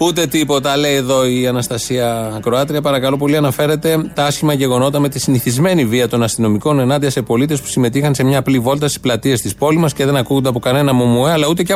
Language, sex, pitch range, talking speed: Greek, male, 120-160 Hz, 215 wpm